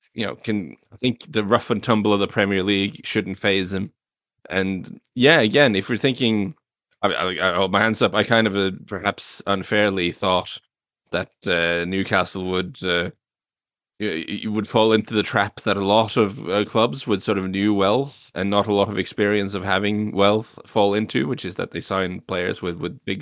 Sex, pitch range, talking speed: male, 100-120 Hz, 200 wpm